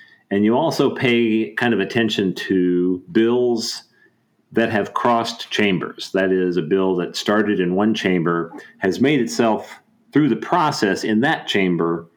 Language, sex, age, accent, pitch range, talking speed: English, male, 40-59, American, 90-110 Hz, 155 wpm